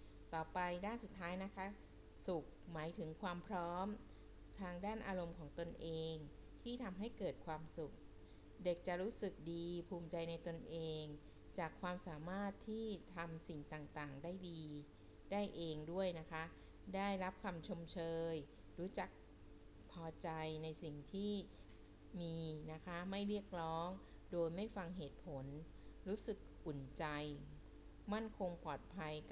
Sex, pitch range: female, 155-190 Hz